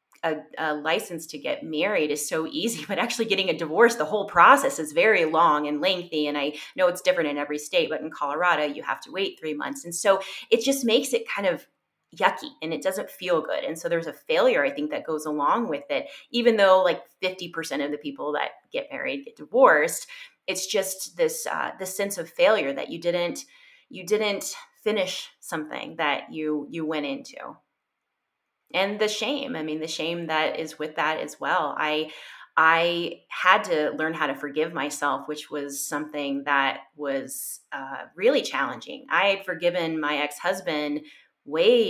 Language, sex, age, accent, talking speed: English, female, 30-49, American, 190 wpm